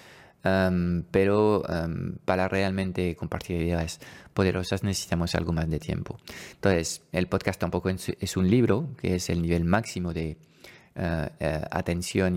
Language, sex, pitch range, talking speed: Spanish, male, 85-100 Hz, 120 wpm